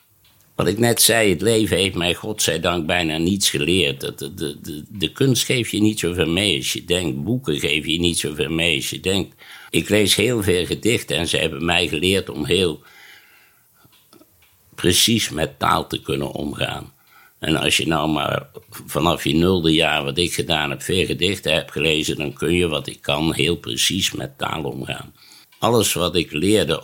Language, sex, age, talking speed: Dutch, male, 60-79, 185 wpm